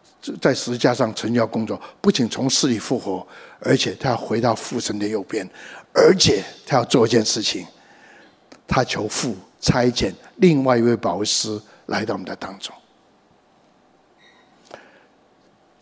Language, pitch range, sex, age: Chinese, 125-150 Hz, male, 60-79